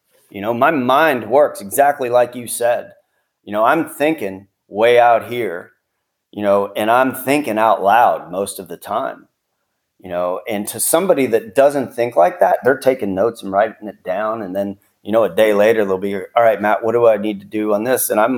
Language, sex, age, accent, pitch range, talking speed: English, male, 30-49, American, 100-120 Hz, 215 wpm